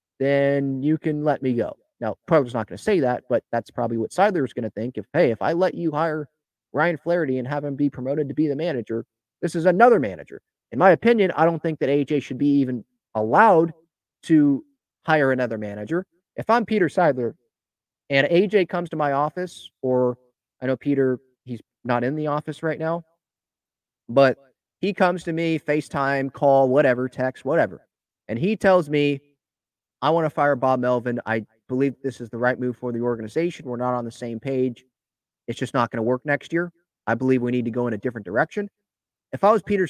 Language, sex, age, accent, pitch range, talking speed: English, male, 30-49, American, 125-165 Hz, 210 wpm